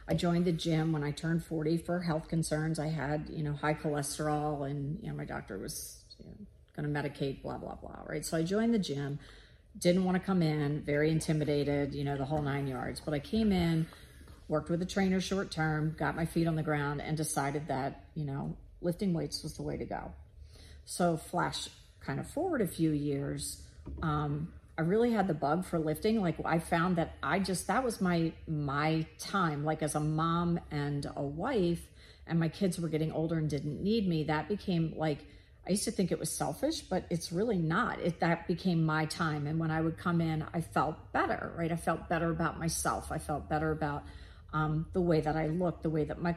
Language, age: English, 40-59